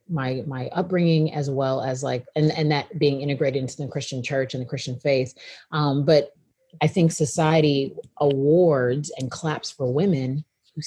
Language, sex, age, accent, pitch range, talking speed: English, female, 30-49, American, 135-180 Hz, 170 wpm